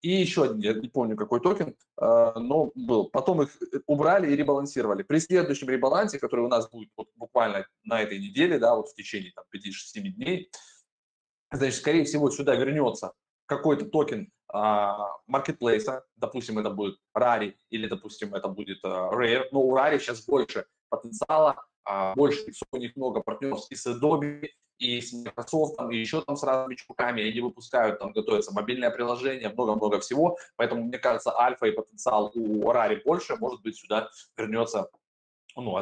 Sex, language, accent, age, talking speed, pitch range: male, Russian, native, 20-39, 160 wpm, 110-155 Hz